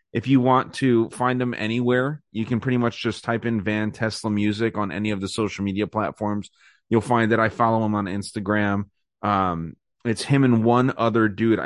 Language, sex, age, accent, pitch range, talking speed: English, male, 30-49, American, 100-115 Hz, 200 wpm